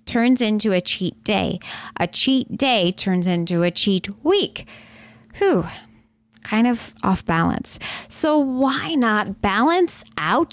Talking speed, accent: 130 wpm, American